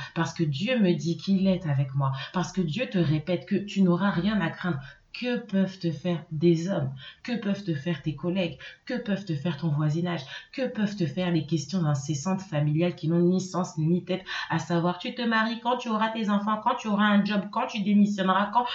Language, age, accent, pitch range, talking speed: French, 30-49, French, 165-200 Hz, 225 wpm